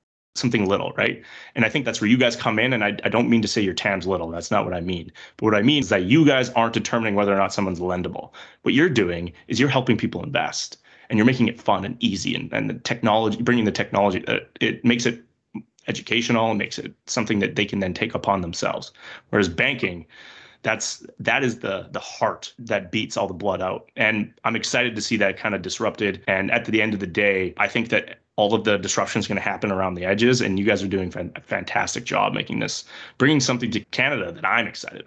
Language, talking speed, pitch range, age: English, 240 wpm, 100-120 Hz, 30-49